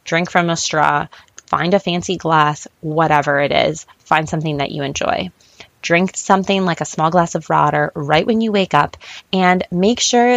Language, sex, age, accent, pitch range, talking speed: English, female, 20-39, American, 165-215 Hz, 185 wpm